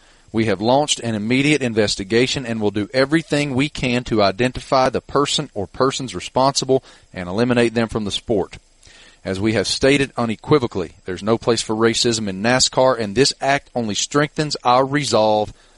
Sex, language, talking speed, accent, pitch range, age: male, English, 165 wpm, American, 115-140 Hz, 40-59